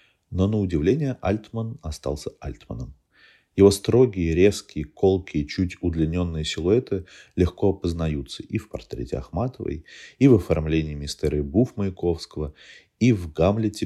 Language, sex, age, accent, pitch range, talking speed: Russian, male, 30-49, native, 75-105 Hz, 120 wpm